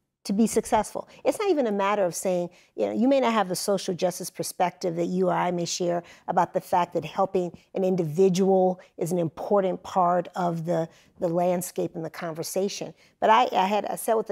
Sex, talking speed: female, 215 wpm